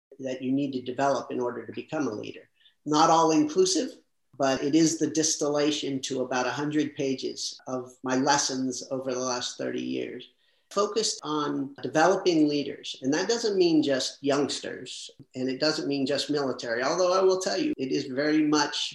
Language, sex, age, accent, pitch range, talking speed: English, male, 50-69, American, 135-190 Hz, 175 wpm